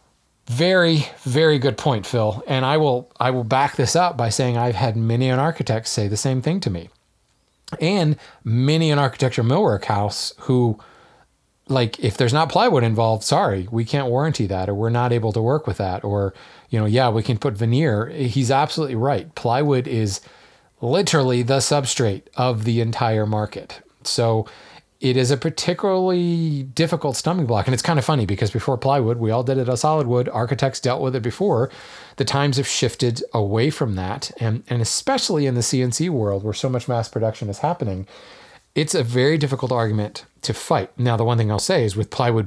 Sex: male